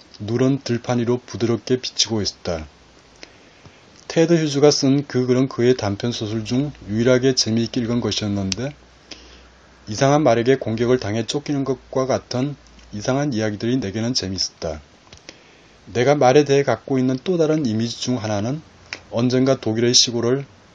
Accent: native